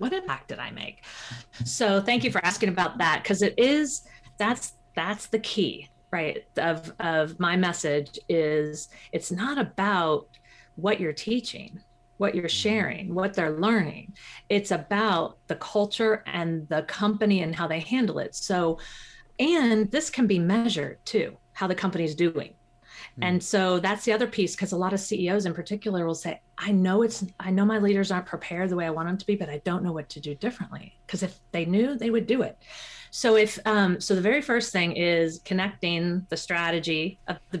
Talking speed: 195 wpm